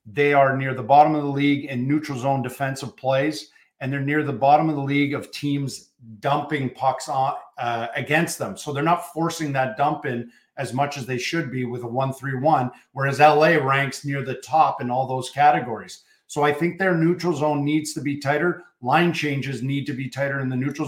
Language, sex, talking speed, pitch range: English, male, 215 wpm, 135-150 Hz